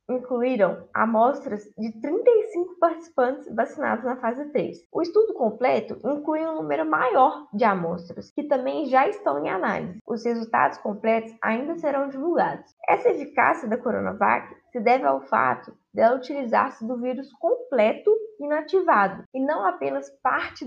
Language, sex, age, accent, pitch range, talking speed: Portuguese, female, 10-29, Brazilian, 225-300 Hz, 140 wpm